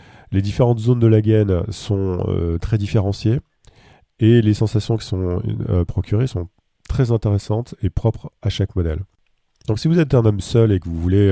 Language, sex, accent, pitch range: French, male, French, 90-110 Hz